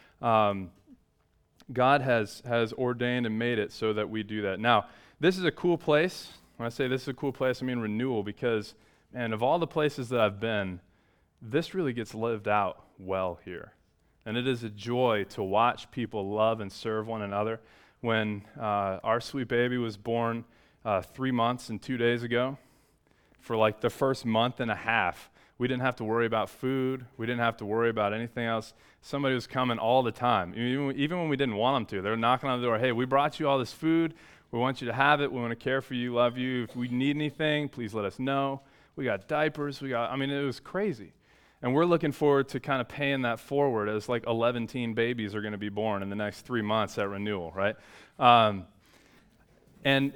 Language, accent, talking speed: English, American, 220 wpm